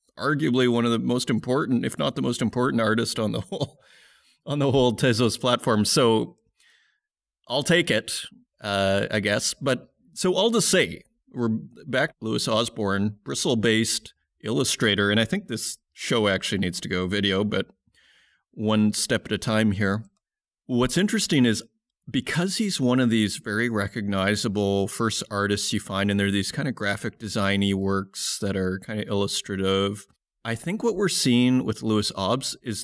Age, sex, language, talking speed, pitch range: 30-49, male, English, 170 wpm, 100-125 Hz